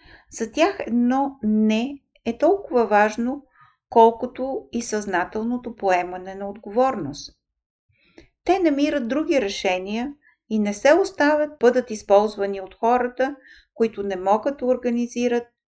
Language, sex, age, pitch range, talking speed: Bulgarian, female, 50-69, 200-280 Hz, 110 wpm